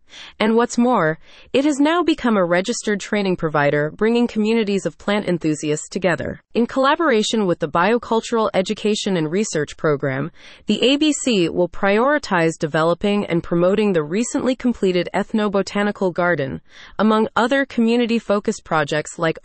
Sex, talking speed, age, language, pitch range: female, 135 wpm, 30-49, English, 170-225 Hz